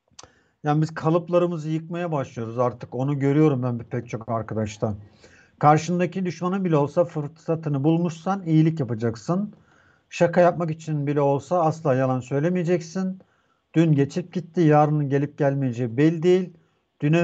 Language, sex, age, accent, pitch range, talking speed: Turkish, male, 50-69, native, 140-175 Hz, 130 wpm